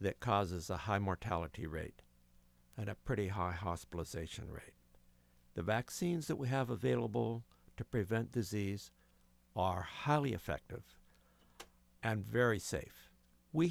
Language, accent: English, American